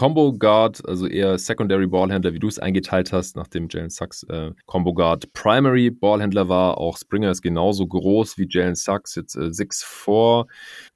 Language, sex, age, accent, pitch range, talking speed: German, male, 20-39, German, 90-105 Hz, 170 wpm